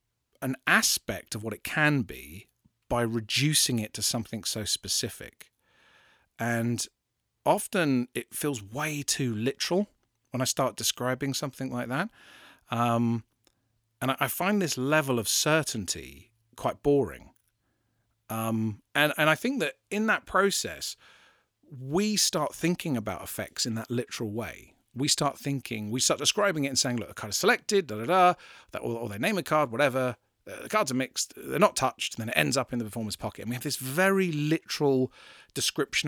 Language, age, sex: English, 40-59, male